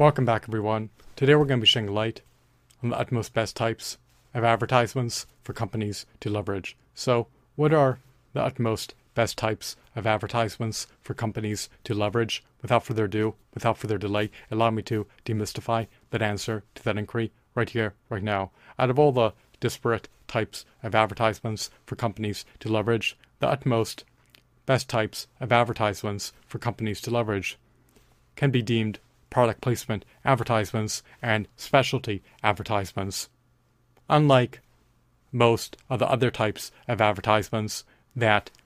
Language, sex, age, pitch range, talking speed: English, male, 30-49, 110-125 Hz, 145 wpm